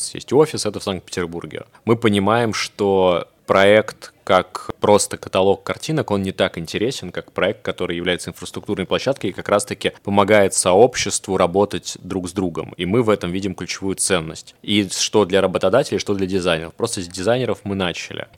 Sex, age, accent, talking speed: male, 20-39, native, 165 wpm